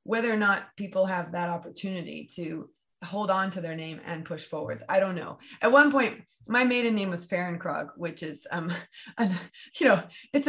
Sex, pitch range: female, 175-220 Hz